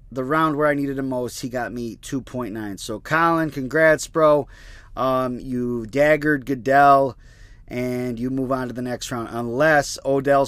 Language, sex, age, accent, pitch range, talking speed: English, male, 30-49, American, 120-145 Hz, 165 wpm